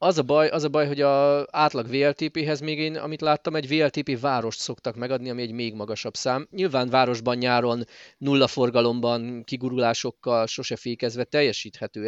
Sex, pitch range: male, 115-150 Hz